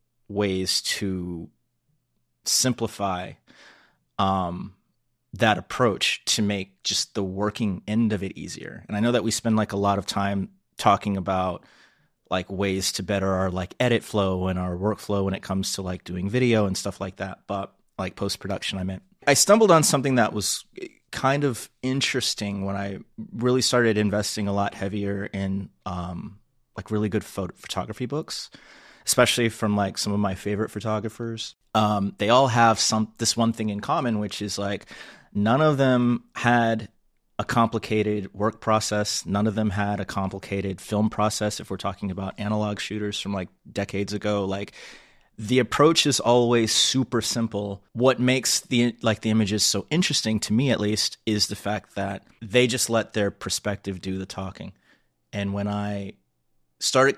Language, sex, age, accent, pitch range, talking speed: English, male, 30-49, American, 100-115 Hz, 170 wpm